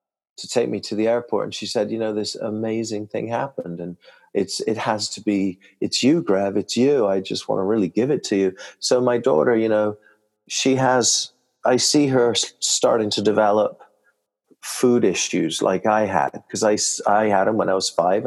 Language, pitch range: English, 105-130 Hz